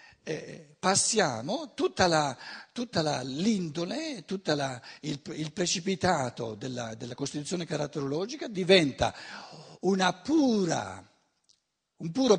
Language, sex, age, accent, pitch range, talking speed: Italian, male, 60-79, native, 150-205 Hz, 90 wpm